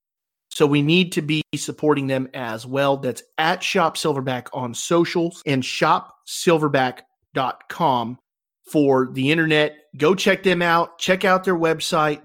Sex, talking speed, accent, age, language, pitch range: male, 130 wpm, American, 30-49, English, 135-185 Hz